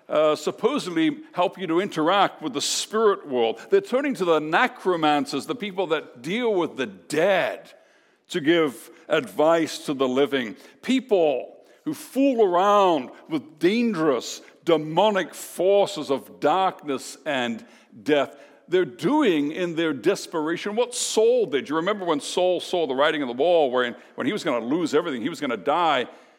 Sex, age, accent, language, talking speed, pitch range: male, 60-79, American, English, 160 wpm, 155-245 Hz